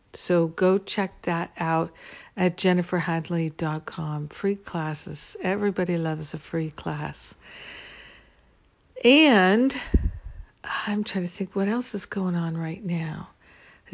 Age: 60-79